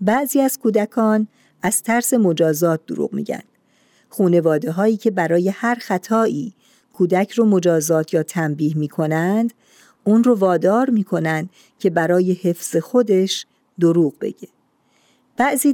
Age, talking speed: 50-69, 120 wpm